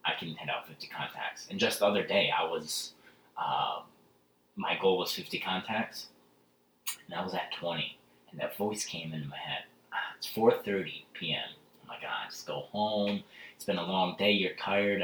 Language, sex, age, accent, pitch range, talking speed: English, male, 30-49, American, 75-100 Hz, 190 wpm